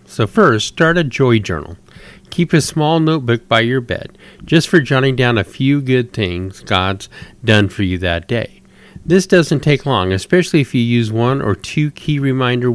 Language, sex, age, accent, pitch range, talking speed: English, male, 50-69, American, 105-150 Hz, 190 wpm